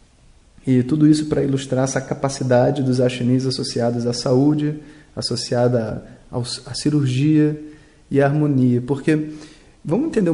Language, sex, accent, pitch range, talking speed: Portuguese, male, Brazilian, 125-155 Hz, 120 wpm